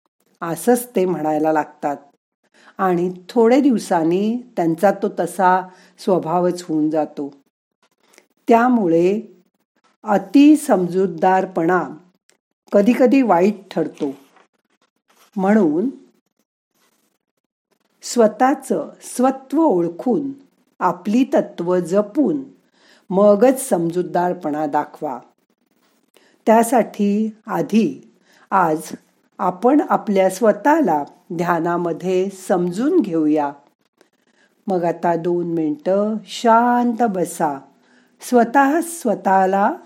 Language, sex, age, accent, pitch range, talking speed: Marathi, female, 50-69, native, 175-230 Hz, 70 wpm